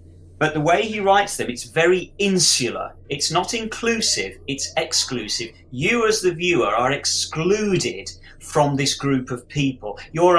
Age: 40-59